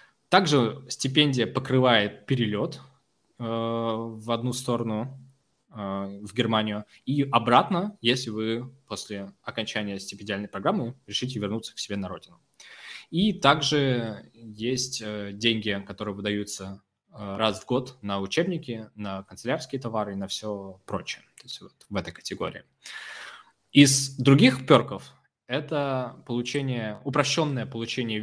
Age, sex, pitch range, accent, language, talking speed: 20-39, male, 105-130 Hz, native, Russian, 105 wpm